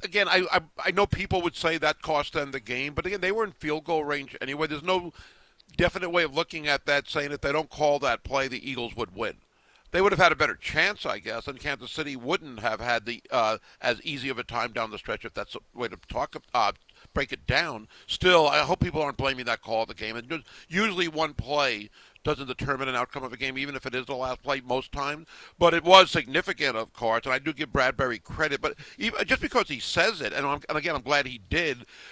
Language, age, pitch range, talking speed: English, 60-79, 120-155 Hz, 250 wpm